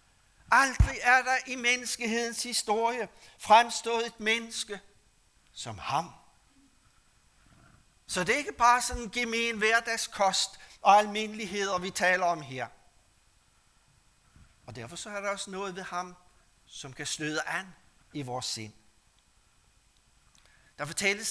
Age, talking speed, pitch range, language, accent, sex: 60-79, 125 wpm, 150-215 Hz, Danish, native, male